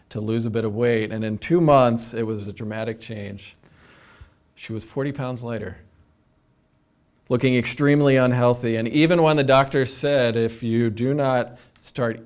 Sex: male